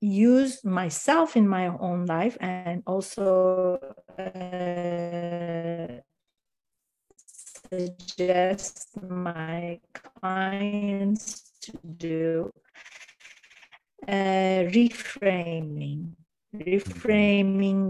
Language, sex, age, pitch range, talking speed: English, female, 40-59, 170-205 Hz, 55 wpm